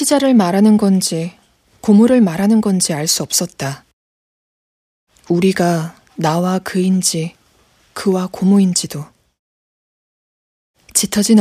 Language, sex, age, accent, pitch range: Korean, female, 20-39, native, 160-215 Hz